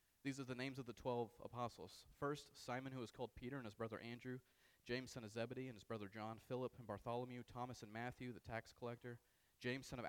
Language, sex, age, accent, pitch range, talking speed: English, male, 30-49, American, 105-130 Hz, 225 wpm